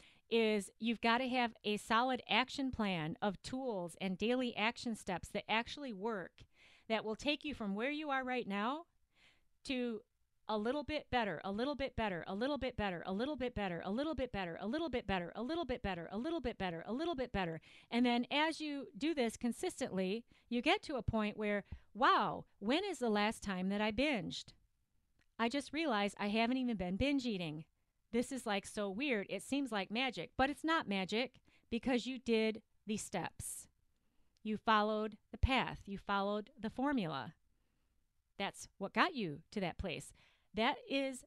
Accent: American